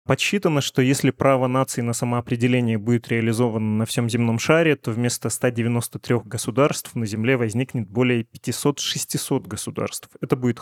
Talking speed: 140 wpm